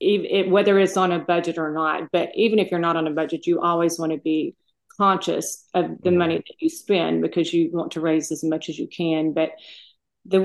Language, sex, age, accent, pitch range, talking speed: English, female, 40-59, American, 160-185 Hz, 230 wpm